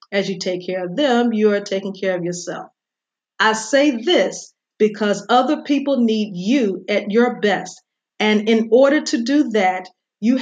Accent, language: American, English